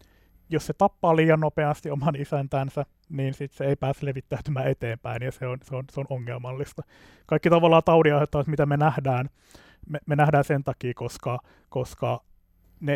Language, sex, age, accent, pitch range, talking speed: Finnish, male, 30-49, native, 125-155 Hz, 170 wpm